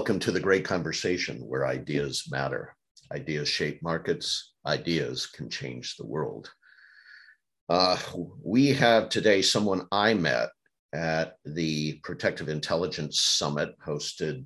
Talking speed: 120 wpm